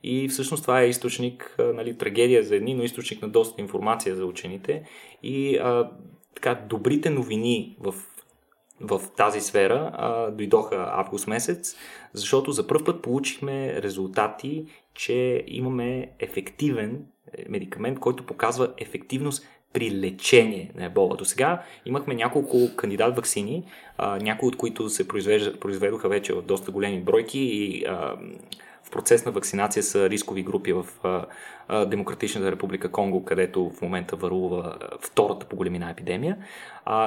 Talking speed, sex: 140 wpm, male